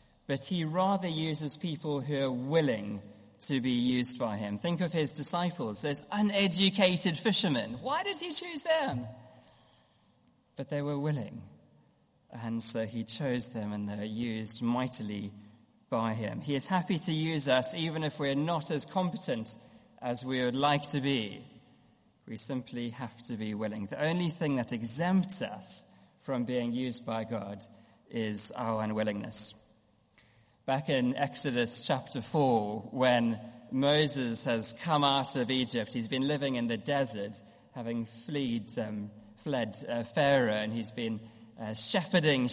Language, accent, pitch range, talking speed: English, British, 115-165 Hz, 150 wpm